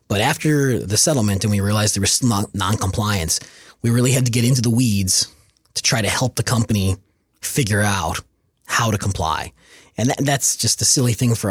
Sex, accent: male, American